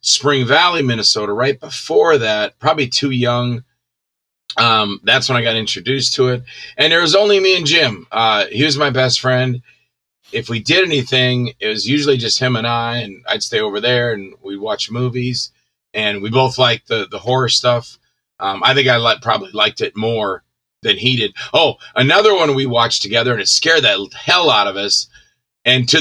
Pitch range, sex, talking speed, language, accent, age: 115-140 Hz, male, 200 wpm, English, American, 30-49